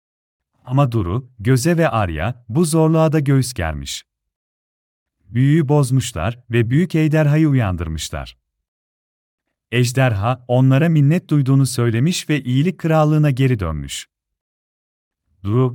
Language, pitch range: Turkish, 105-150 Hz